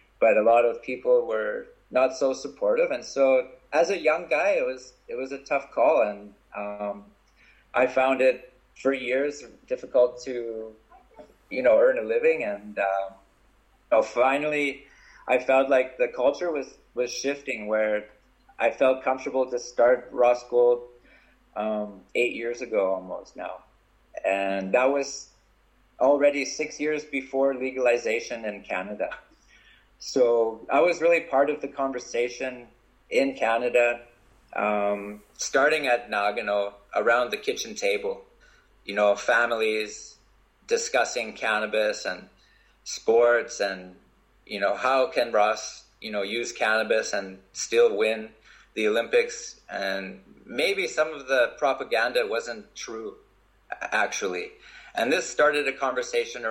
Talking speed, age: 135 wpm, 30-49